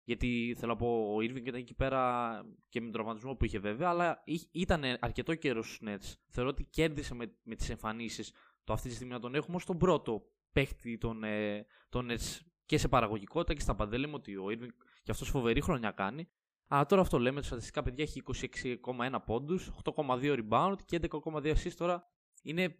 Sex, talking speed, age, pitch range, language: male, 190 wpm, 20-39, 115-155 Hz, Greek